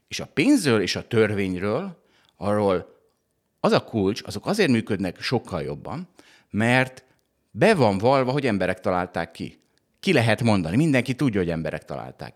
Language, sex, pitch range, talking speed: Hungarian, male, 95-130 Hz, 150 wpm